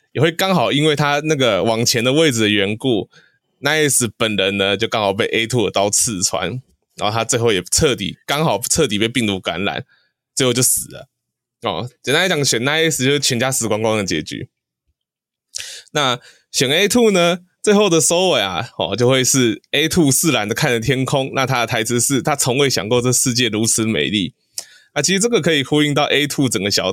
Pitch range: 110-140 Hz